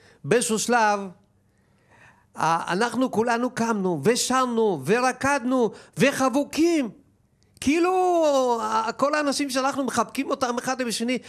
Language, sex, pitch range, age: Hebrew, male, 160-235 Hz, 50-69